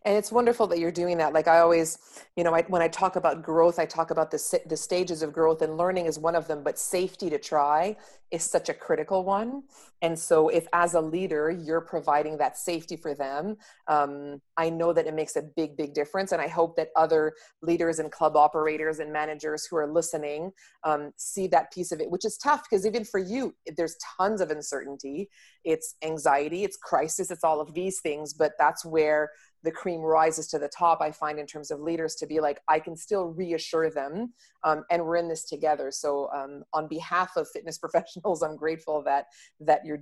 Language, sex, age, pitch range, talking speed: English, female, 30-49, 150-175 Hz, 215 wpm